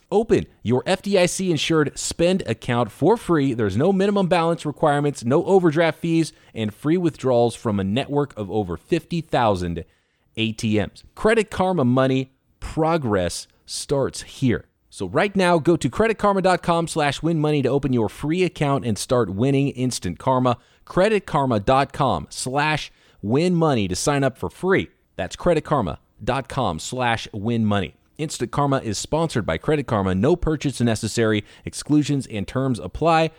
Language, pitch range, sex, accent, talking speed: English, 115-165 Hz, male, American, 135 wpm